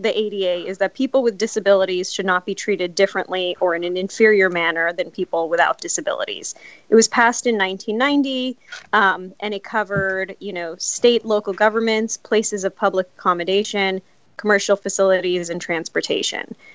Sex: female